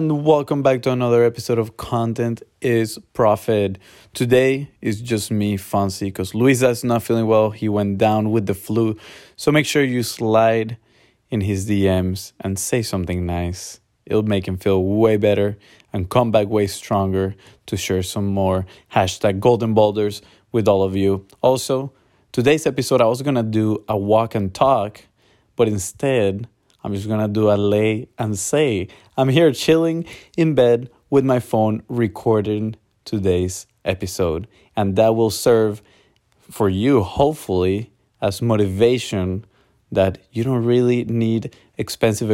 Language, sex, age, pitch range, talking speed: English, male, 20-39, 100-120 Hz, 155 wpm